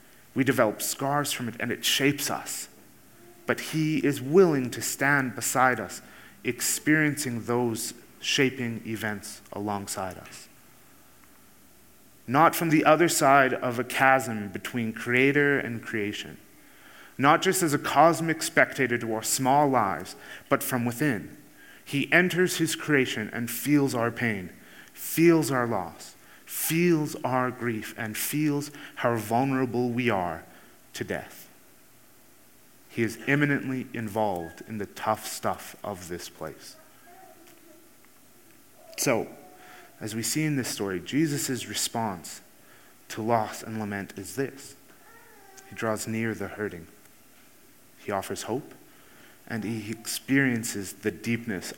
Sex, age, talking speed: male, 30-49, 125 wpm